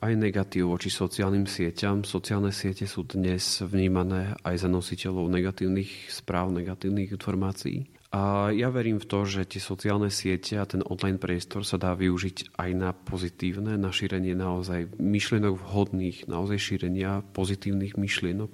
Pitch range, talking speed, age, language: 95-105 Hz, 145 wpm, 40-59, Slovak